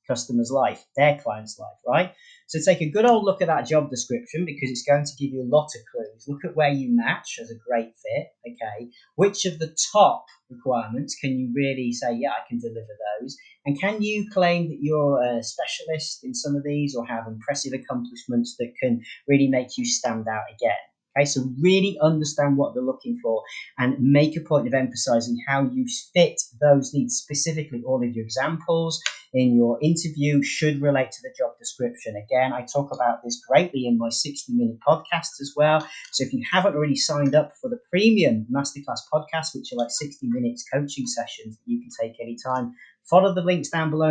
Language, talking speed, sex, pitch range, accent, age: English, 200 wpm, male, 120-165 Hz, British, 30-49